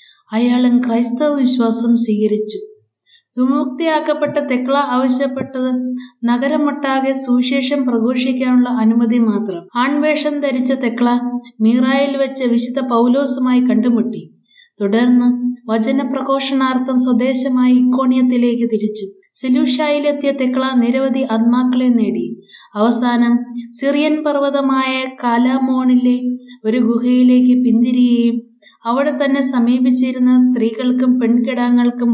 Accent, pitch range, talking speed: native, 235-260 Hz, 80 wpm